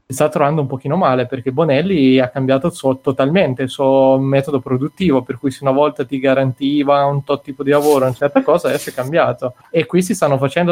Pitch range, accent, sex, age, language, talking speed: 135-160 Hz, native, male, 20-39, Italian, 225 wpm